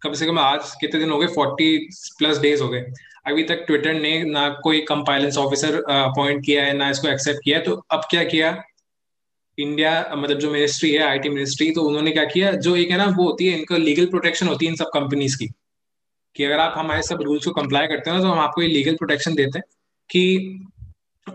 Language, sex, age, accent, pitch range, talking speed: Hindi, male, 20-39, native, 145-170 Hz, 235 wpm